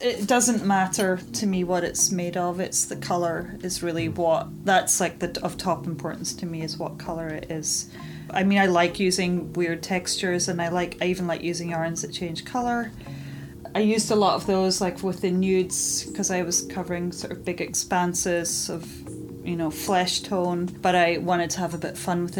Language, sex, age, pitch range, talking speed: English, female, 30-49, 165-185 Hz, 210 wpm